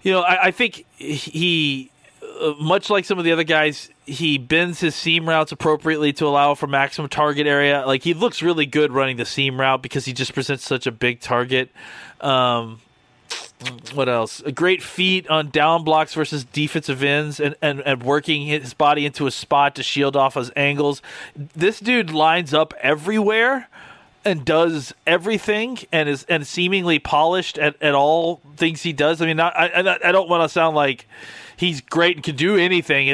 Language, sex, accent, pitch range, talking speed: English, male, American, 135-165 Hz, 190 wpm